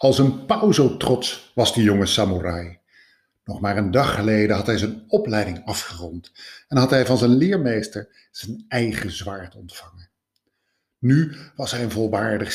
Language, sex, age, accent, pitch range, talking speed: Dutch, male, 50-69, Dutch, 100-135 Hz, 160 wpm